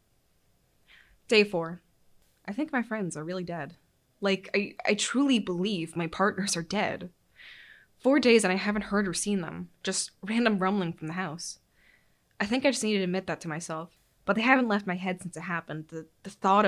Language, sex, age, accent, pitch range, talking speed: English, female, 20-39, American, 175-225 Hz, 200 wpm